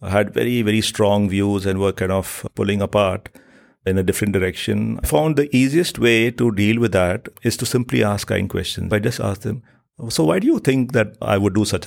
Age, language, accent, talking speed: 50-69, English, Indian, 220 wpm